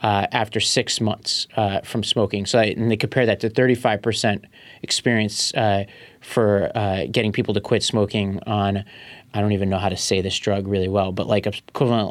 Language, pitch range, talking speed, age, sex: English, 105-130 Hz, 205 wpm, 30-49, male